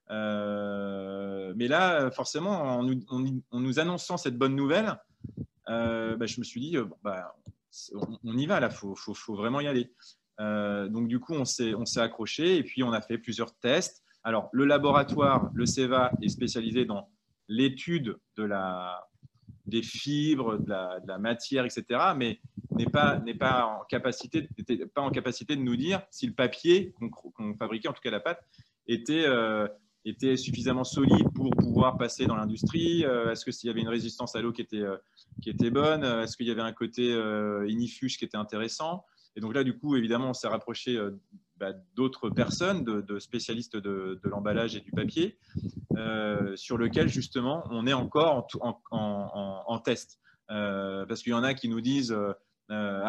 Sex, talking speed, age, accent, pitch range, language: male, 195 wpm, 30-49, French, 105-130 Hz, English